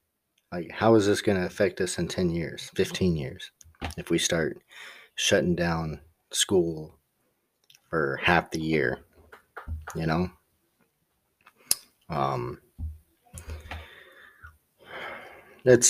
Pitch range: 80-105 Hz